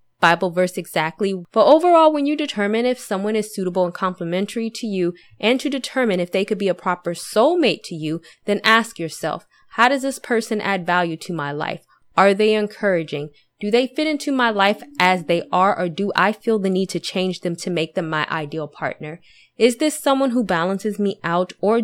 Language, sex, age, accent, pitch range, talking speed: English, female, 20-39, American, 175-220 Hz, 205 wpm